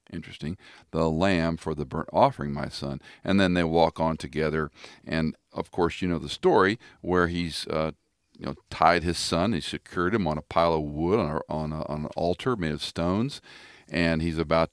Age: 50-69